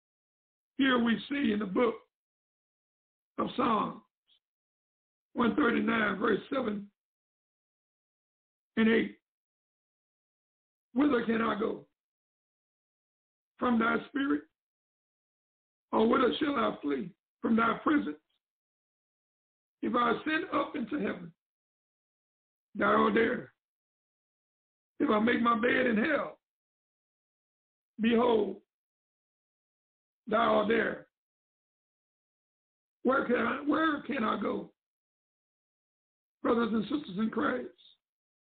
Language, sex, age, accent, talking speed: English, male, 60-79, American, 95 wpm